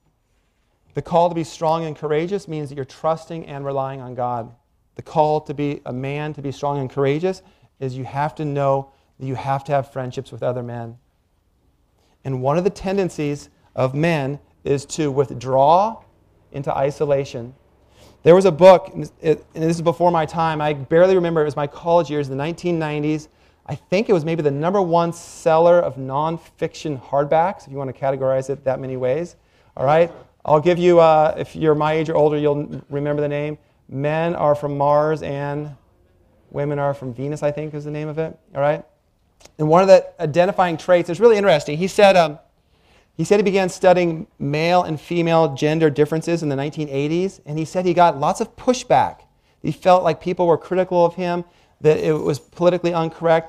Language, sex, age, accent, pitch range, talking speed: English, male, 40-59, American, 140-165 Hz, 195 wpm